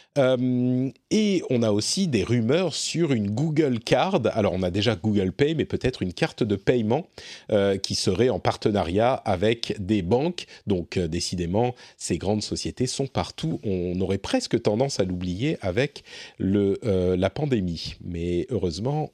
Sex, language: male, French